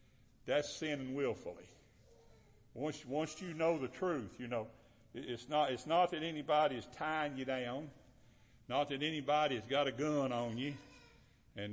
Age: 60-79